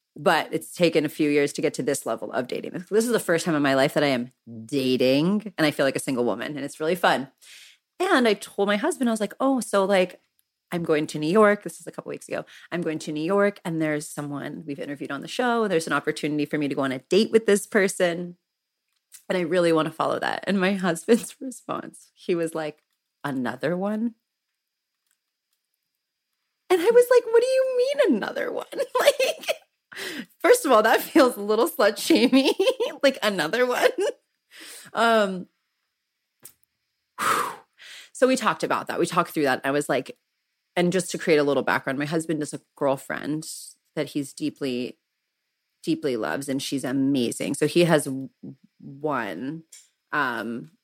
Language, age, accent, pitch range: English, 30-49, American, 150-235 Hz